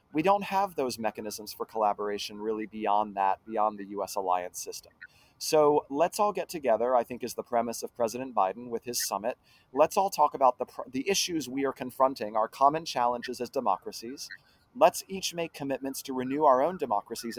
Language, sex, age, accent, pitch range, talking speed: English, male, 30-49, American, 110-150 Hz, 190 wpm